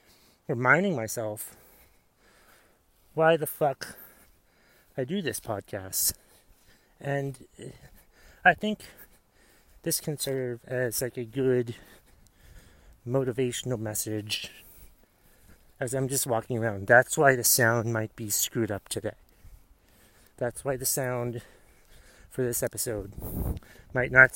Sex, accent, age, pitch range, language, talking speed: male, American, 30-49, 100-150 Hz, English, 110 wpm